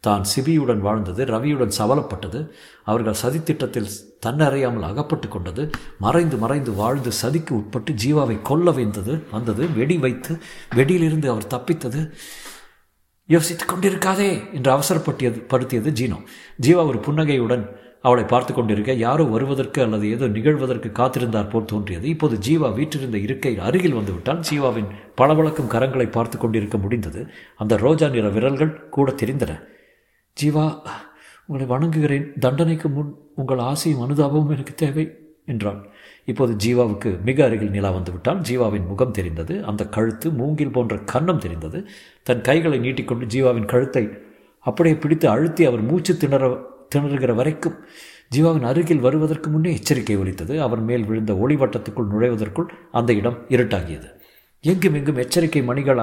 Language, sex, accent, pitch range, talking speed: Tamil, male, native, 115-155 Hz, 120 wpm